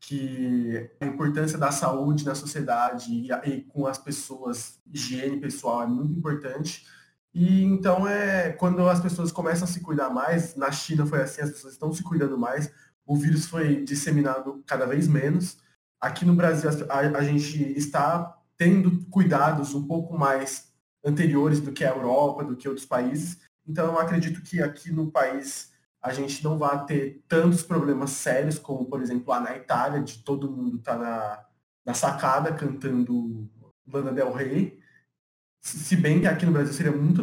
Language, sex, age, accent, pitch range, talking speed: Portuguese, male, 20-39, Brazilian, 135-160 Hz, 175 wpm